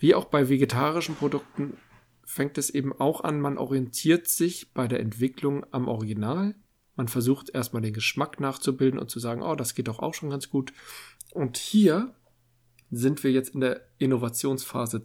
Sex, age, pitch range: male, 50-69, 120-145 Hz